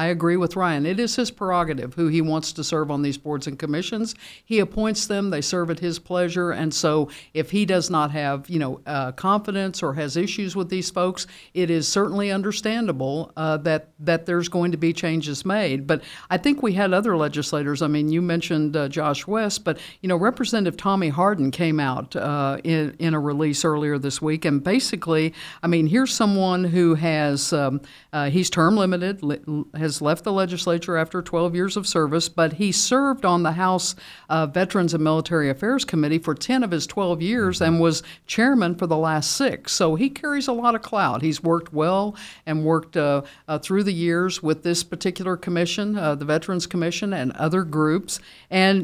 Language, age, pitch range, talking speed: English, 60-79, 155-195 Hz, 200 wpm